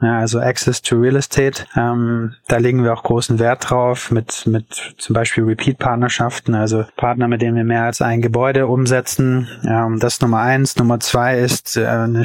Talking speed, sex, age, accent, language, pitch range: 190 wpm, male, 20-39, German, German, 115-125 Hz